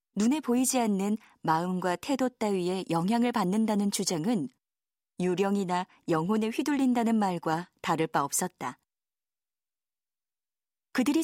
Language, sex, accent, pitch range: Korean, female, native, 190-265 Hz